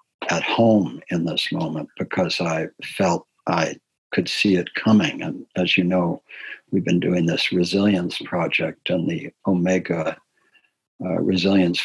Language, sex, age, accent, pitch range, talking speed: English, male, 60-79, American, 90-105 Hz, 140 wpm